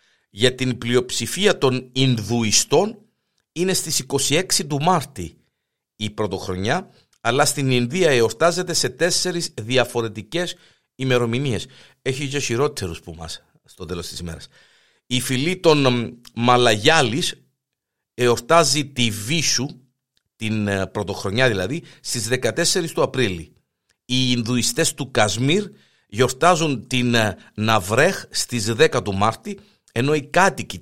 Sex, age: male, 50-69